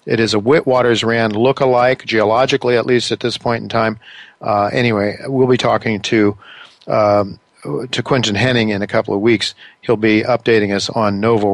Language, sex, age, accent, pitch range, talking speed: English, male, 50-69, American, 110-130 Hz, 180 wpm